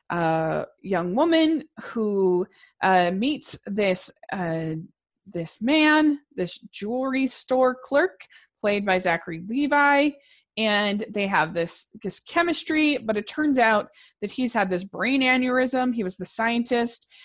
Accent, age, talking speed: American, 20-39, 135 wpm